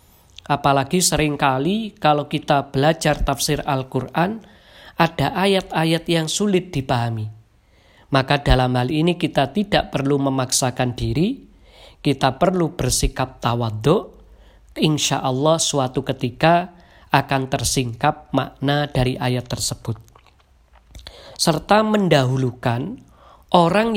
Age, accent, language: 40-59, native, Indonesian